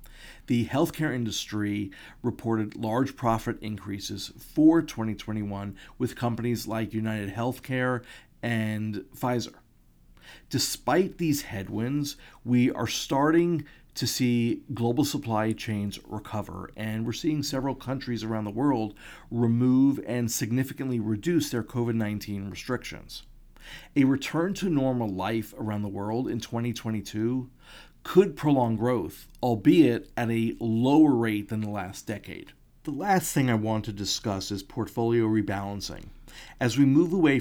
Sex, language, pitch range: male, English, 105-135 Hz